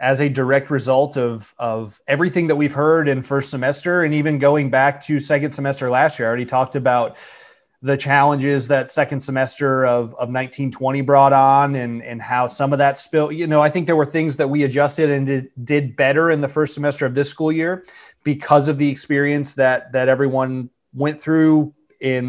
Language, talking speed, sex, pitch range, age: English, 200 wpm, male, 130-150 Hz, 30-49